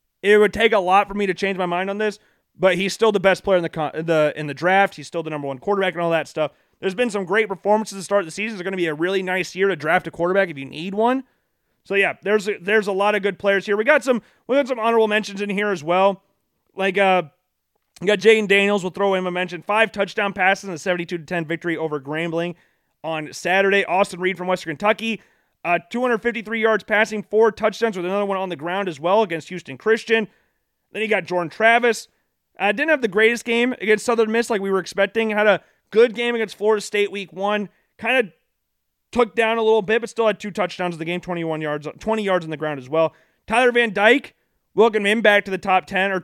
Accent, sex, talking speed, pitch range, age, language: American, male, 250 wpm, 180-215 Hz, 30-49, English